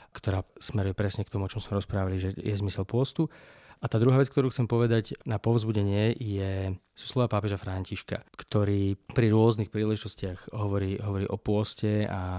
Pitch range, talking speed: 100-120 Hz, 175 wpm